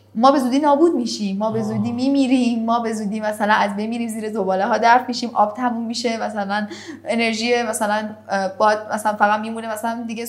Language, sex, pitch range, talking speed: Persian, female, 210-275 Hz, 185 wpm